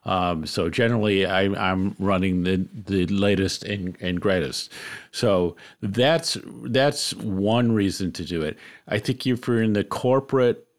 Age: 50-69